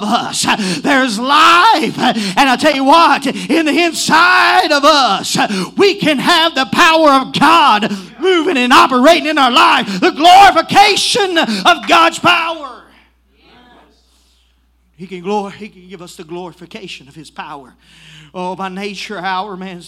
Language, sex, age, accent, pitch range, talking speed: English, male, 40-59, American, 195-255 Hz, 145 wpm